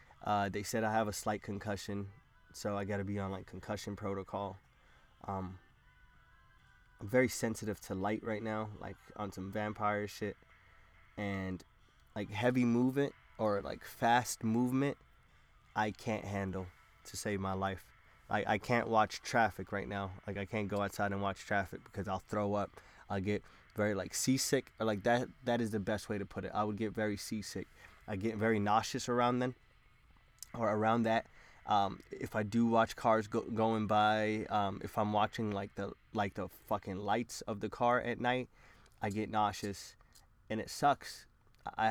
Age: 20-39